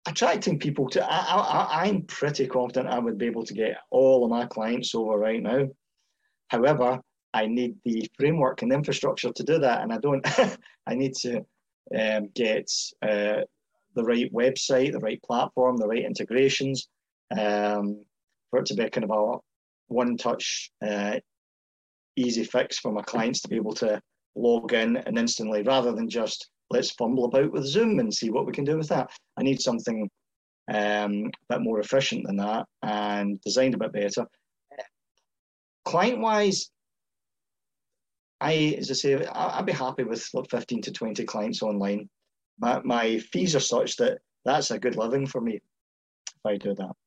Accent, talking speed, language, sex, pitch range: British, 175 wpm, English, male, 105-135 Hz